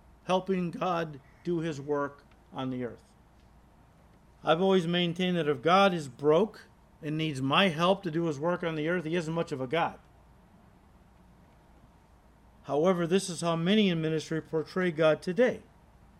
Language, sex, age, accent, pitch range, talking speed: English, male, 50-69, American, 155-200 Hz, 160 wpm